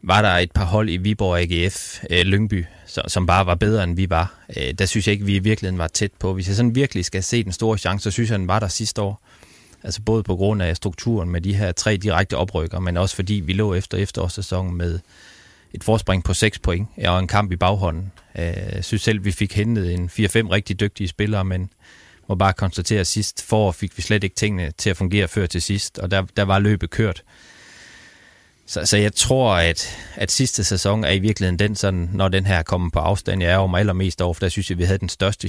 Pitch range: 90-105 Hz